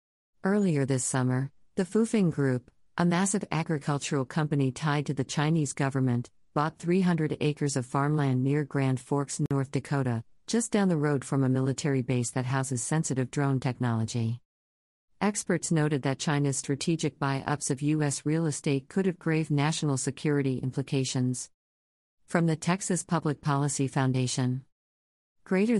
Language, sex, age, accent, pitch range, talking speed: English, female, 50-69, American, 130-150 Hz, 140 wpm